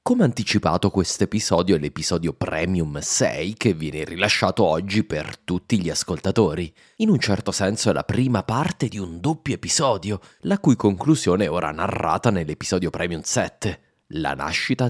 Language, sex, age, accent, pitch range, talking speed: Italian, male, 30-49, native, 85-115 Hz, 155 wpm